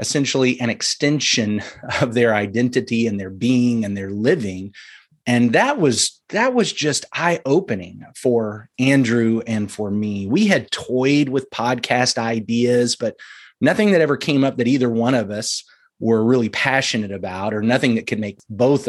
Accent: American